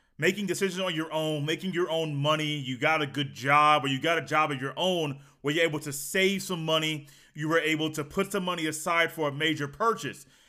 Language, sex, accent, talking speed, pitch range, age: English, male, American, 235 wpm, 160-225 Hz, 30-49